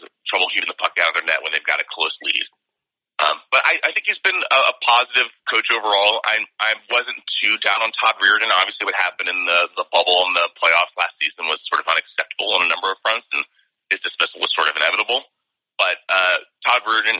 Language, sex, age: English, male, 30-49